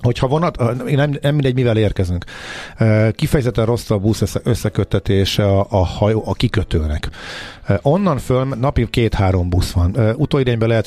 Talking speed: 140 wpm